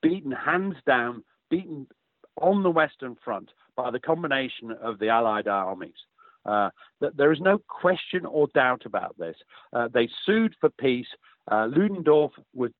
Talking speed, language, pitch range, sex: 150 wpm, English, 115-170 Hz, male